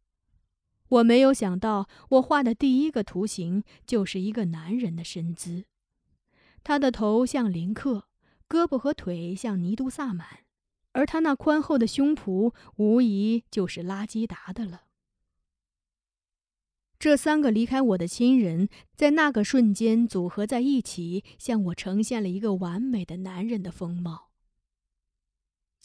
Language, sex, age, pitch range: Chinese, female, 20-39, 185-265 Hz